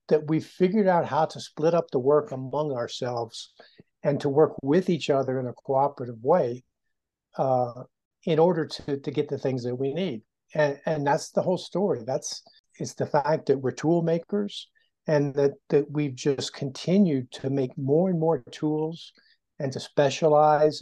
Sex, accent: male, American